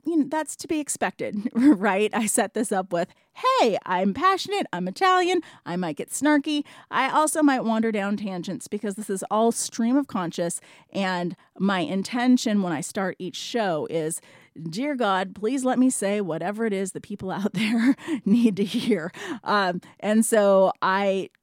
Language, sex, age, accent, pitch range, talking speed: English, female, 30-49, American, 190-245 Hz, 170 wpm